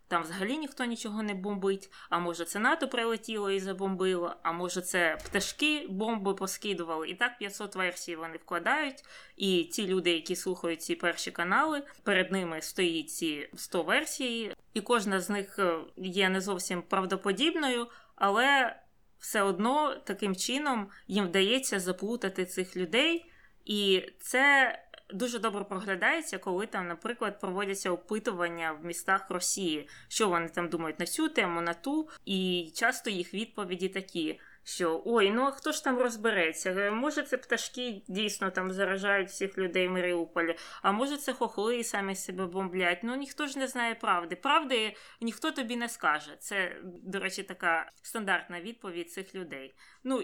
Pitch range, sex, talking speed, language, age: 180-235 Hz, female, 155 wpm, Ukrainian, 20-39